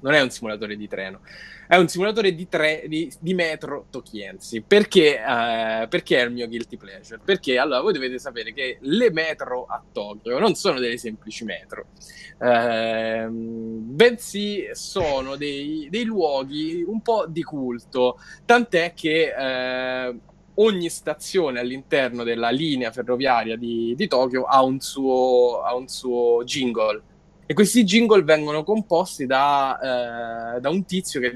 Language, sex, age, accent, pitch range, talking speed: Italian, male, 10-29, native, 120-170 Hz, 150 wpm